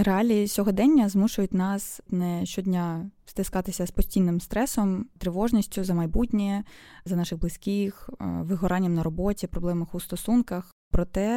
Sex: female